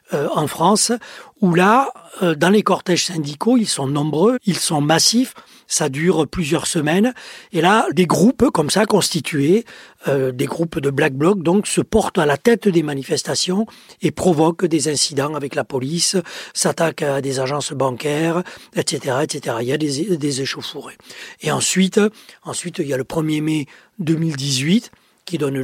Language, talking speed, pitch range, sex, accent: French, 175 wpm, 140-190 Hz, male, French